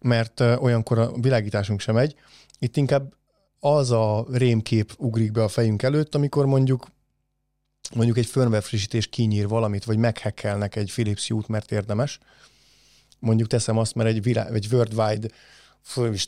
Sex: male